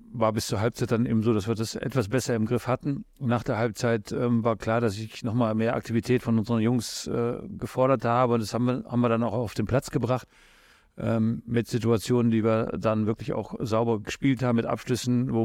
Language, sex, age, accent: German, male, 40-59, German